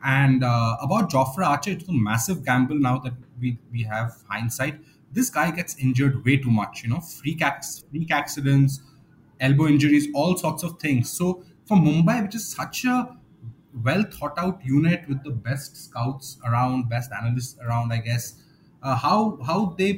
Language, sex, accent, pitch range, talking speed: English, male, Indian, 125-160 Hz, 170 wpm